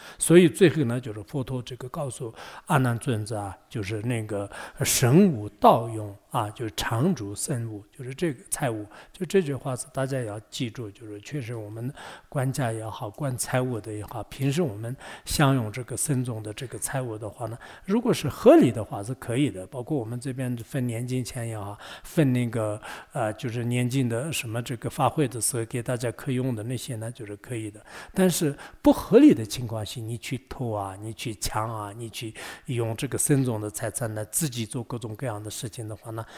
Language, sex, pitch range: English, male, 110-135 Hz